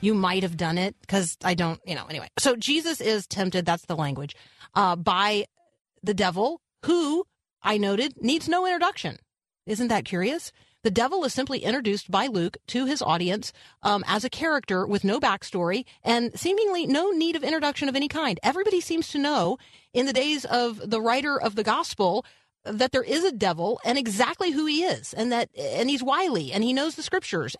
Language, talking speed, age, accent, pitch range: English, 195 wpm, 40-59, American, 190-270 Hz